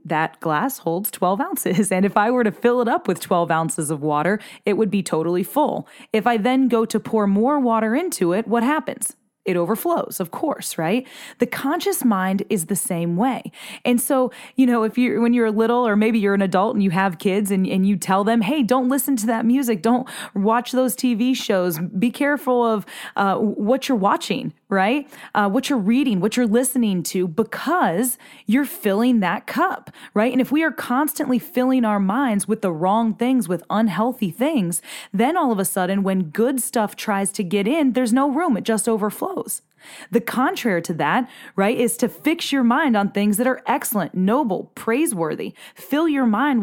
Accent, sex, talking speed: American, female, 200 wpm